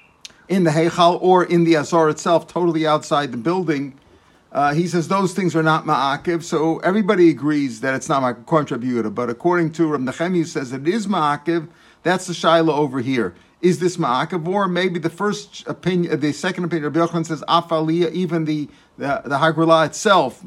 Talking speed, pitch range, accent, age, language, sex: 180 wpm, 155-180 Hz, American, 50-69, English, male